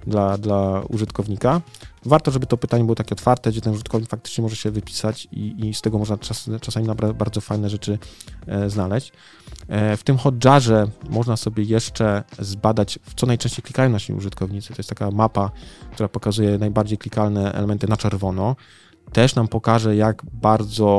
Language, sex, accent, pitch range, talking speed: Polish, male, native, 100-115 Hz, 170 wpm